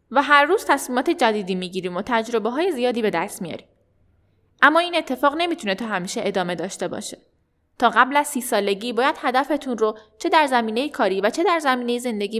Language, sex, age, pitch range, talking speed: Persian, female, 10-29, 210-290 Hz, 185 wpm